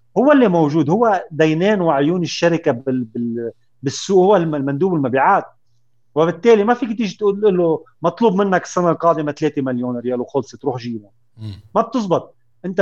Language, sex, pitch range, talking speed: Arabic, male, 125-175 Hz, 145 wpm